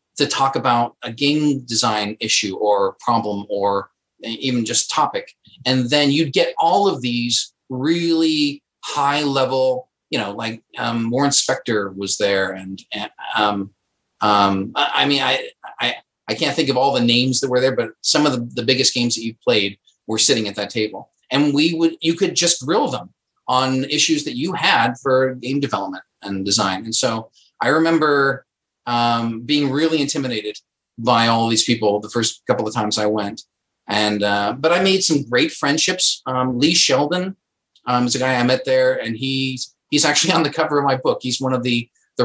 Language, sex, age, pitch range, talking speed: English, male, 40-59, 110-140 Hz, 190 wpm